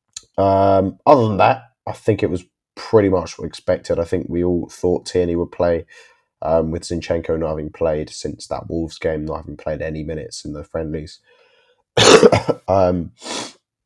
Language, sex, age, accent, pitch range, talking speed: English, male, 20-39, British, 80-95 Hz, 165 wpm